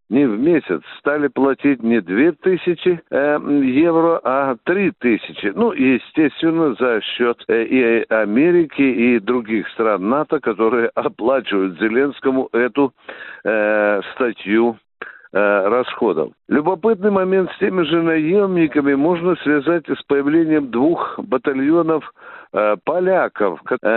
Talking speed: 115 wpm